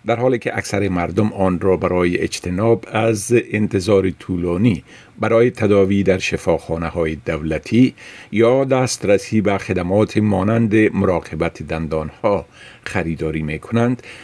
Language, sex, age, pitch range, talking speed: Persian, male, 50-69, 90-120 Hz, 115 wpm